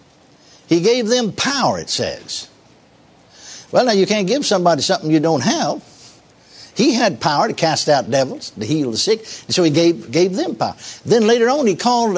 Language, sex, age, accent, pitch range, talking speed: English, male, 60-79, American, 140-205 Hz, 190 wpm